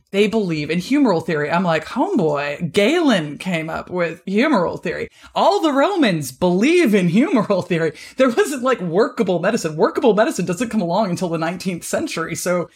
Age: 20-39